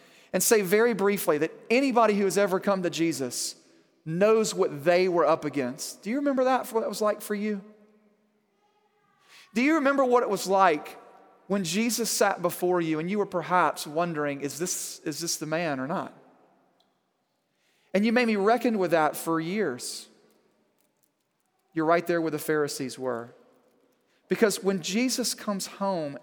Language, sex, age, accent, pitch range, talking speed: English, male, 40-59, American, 165-215 Hz, 165 wpm